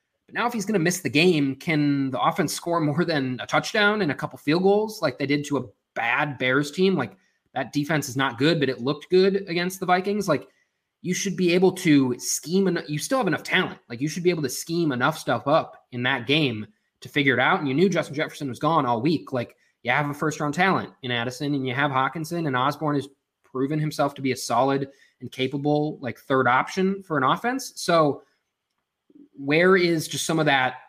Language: English